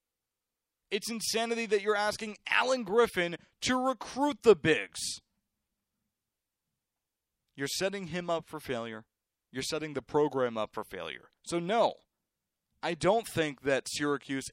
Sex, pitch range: male, 130-200 Hz